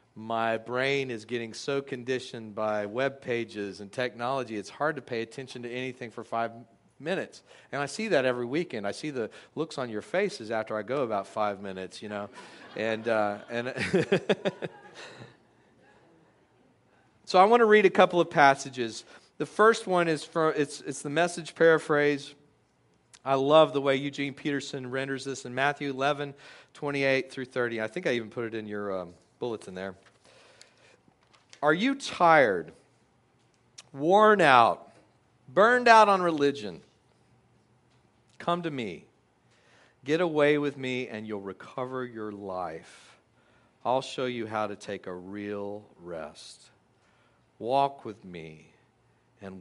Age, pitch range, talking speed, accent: 40-59, 110-145 Hz, 150 wpm, American